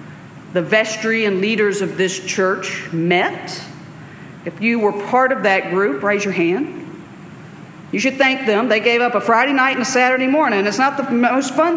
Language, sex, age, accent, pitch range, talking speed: English, female, 50-69, American, 180-245 Hz, 190 wpm